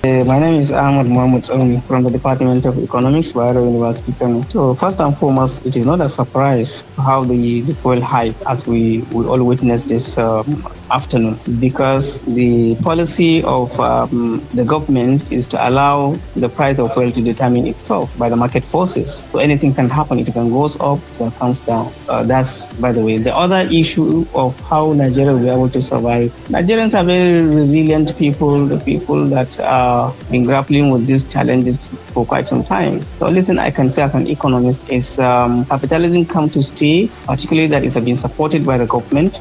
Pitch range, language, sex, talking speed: 125-150 Hz, English, male, 190 wpm